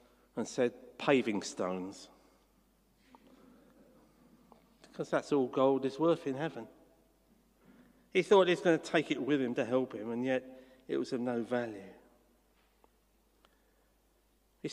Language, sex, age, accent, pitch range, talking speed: English, male, 50-69, British, 135-170 Hz, 130 wpm